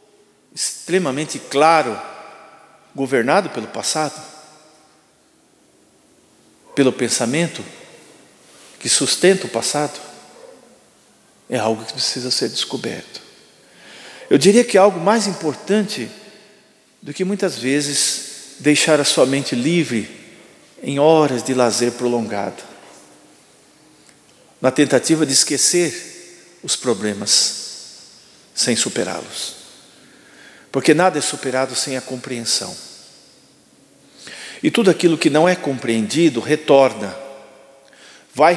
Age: 50-69